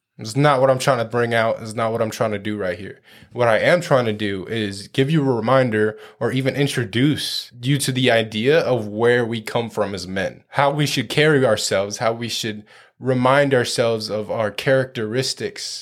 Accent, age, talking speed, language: American, 20-39, 210 wpm, English